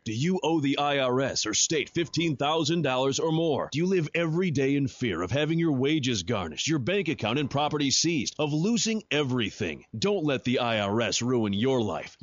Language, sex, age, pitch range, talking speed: English, male, 30-49, 125-165 Hz, 185 wpm